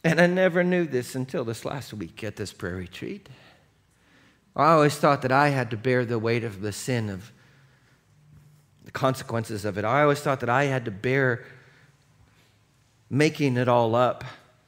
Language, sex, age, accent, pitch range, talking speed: English, male, 40-59, American, 115-140 Hz, 175 wpm